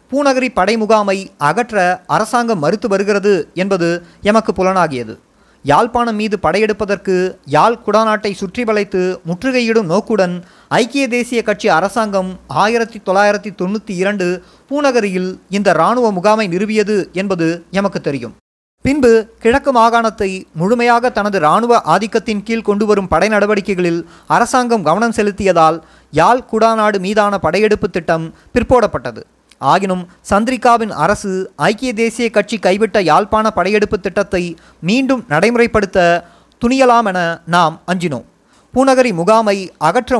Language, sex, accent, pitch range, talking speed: Tamil, male, native, 185-230 Hz, 105 wpm